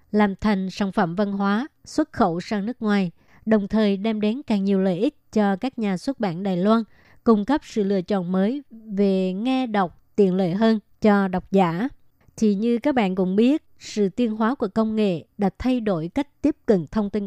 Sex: male